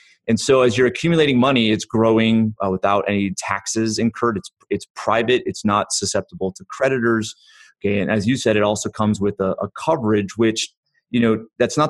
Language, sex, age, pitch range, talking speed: English, male, 30-49, 100-120 Hz, 190 wpm